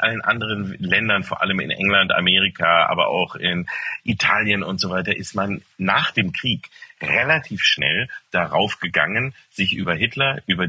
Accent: German